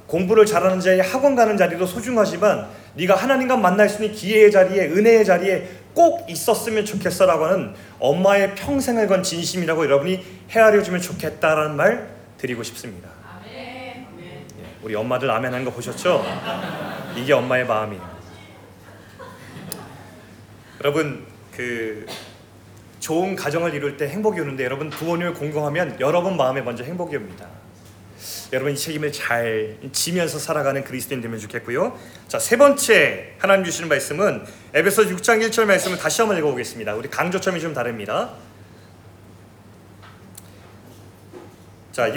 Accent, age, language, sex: native, 30-49, Korean, male